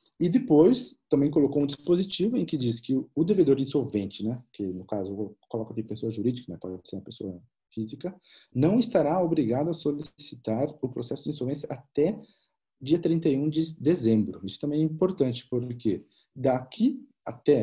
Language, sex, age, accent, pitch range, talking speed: Portuguese, male, 40-59, Brazilian, 110-150 Hz, 175 wpm